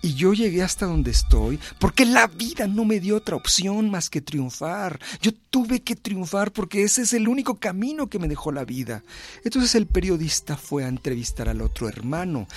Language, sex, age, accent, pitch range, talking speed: Spanish, male, 50-69, Mexican, 170-220 Hz, 195 wpm